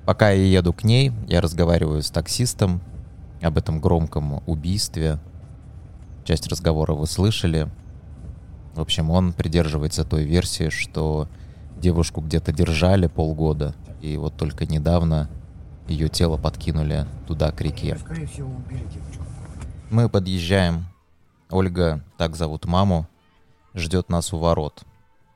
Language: Russian